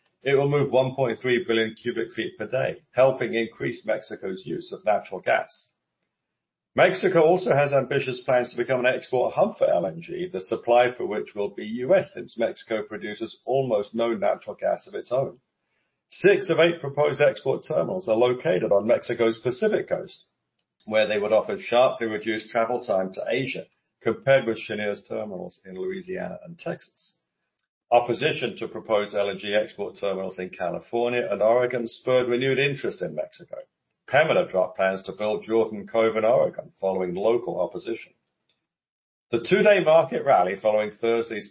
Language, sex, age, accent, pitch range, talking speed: English, male, 50-69, British, 110-135 Hz, 155 wpm